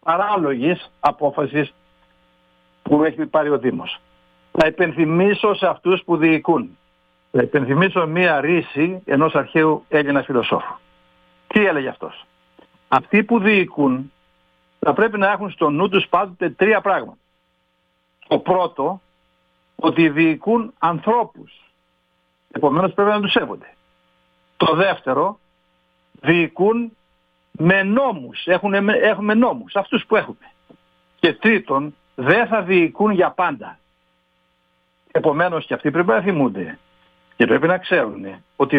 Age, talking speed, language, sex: 60-79, 115 wpm, Greek, male